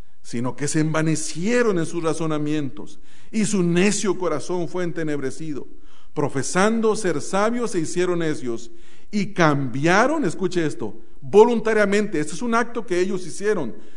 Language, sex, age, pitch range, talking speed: English, male, 40-59, 160-240 Hz, 135 wpm